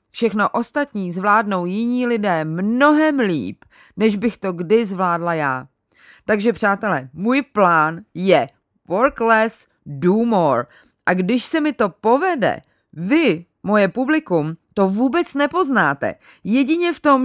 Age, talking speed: 30-49, 130 wpm